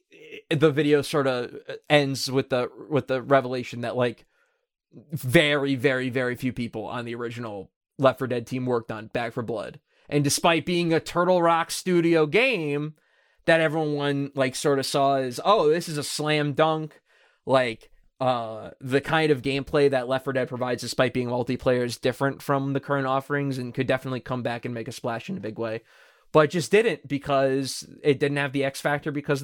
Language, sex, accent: English, male, American